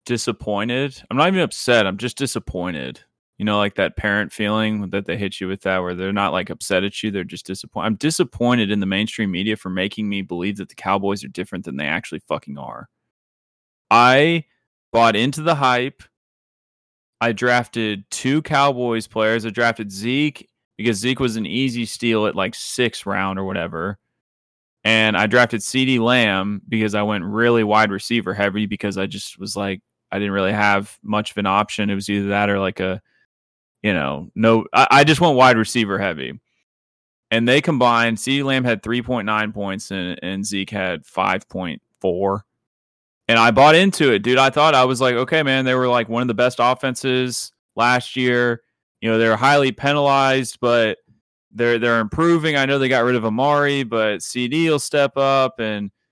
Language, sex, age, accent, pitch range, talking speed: English, male, 20-39, American, 100-130 Hz, 185 wpm